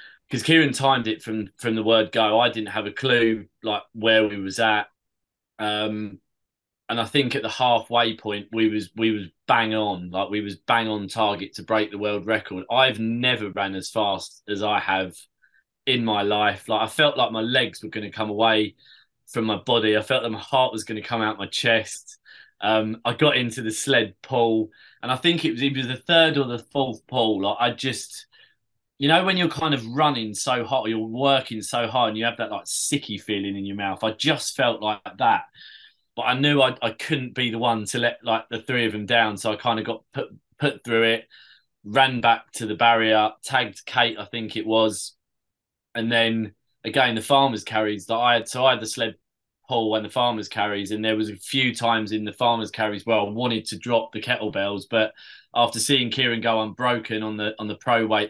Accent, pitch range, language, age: British, 110-125 Hz, English, 20-39